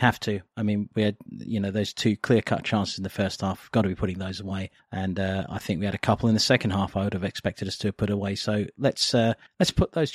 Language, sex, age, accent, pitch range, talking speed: English, male, 30-49, British, 105-150 Hz, 285 wpm